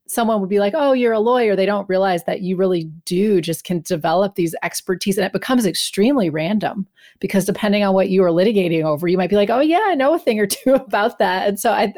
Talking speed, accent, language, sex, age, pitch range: 250 wpm, American, English, female, 30-49, 170-210 Hz